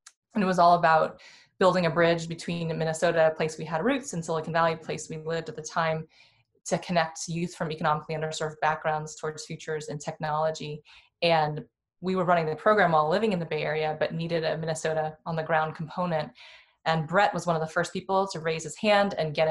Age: 20-39